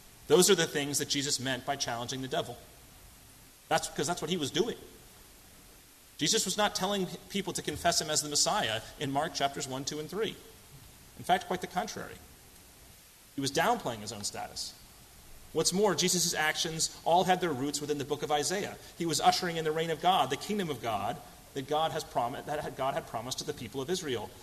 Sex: male